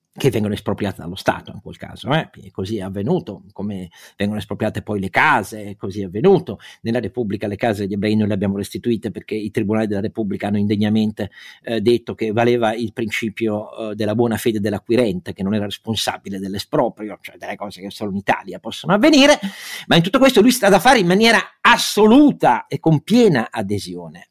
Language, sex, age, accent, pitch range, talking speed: Italian, male, 50-69, native, 105-155 Hz, 200 wpm